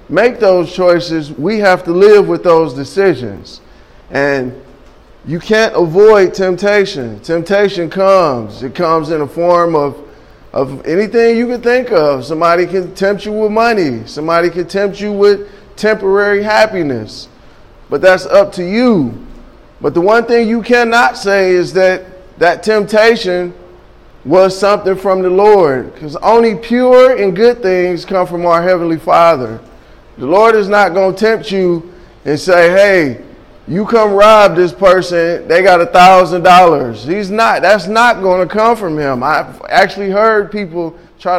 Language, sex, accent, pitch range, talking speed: English, male, American, 165-205 Hz, 160 wpm